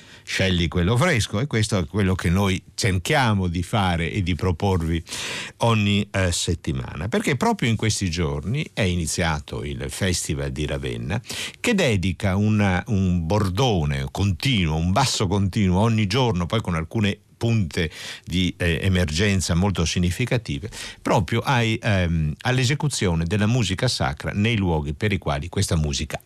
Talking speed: 140 wpm